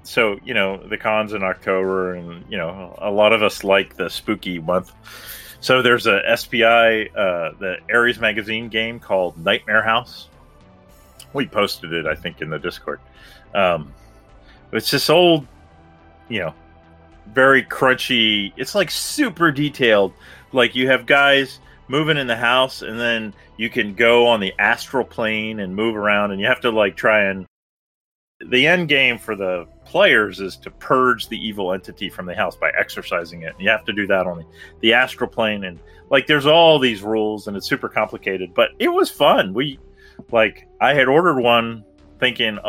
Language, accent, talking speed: English, American, 180 wpm